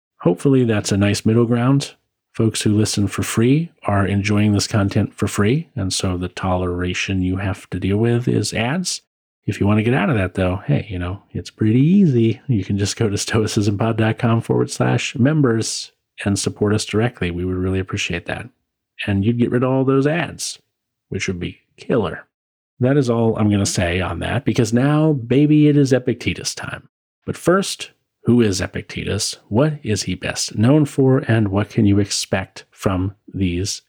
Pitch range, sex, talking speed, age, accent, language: 95-125 Hz, male, 190 wpm, 40-59, American, English